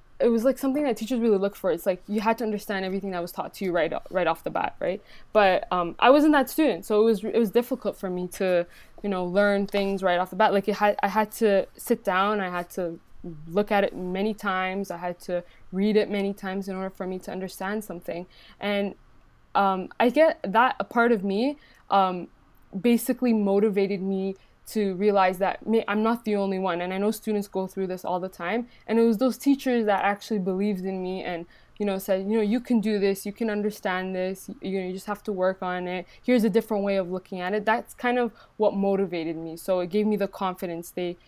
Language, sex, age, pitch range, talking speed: English, female, 20-39, 185-220 Hz, 235 wpm